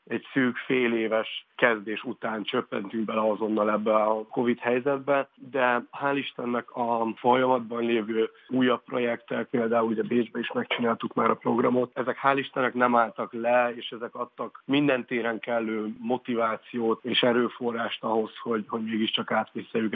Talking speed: 145 wpm